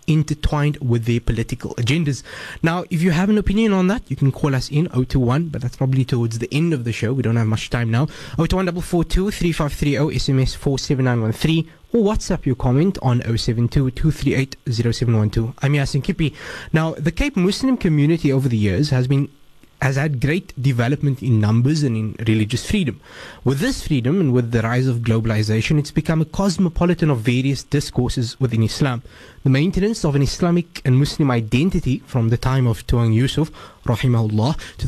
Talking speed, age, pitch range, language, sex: 175 wpm, 20-39, 125-165 Hz, English, male